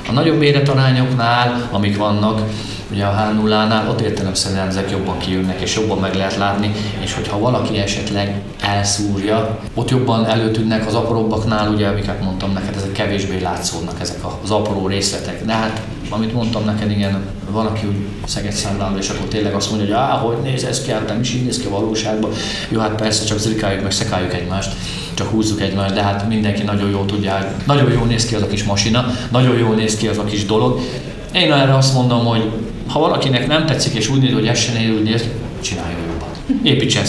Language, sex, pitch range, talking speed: Hungarian, male, 100-115 Hz, 195 wpm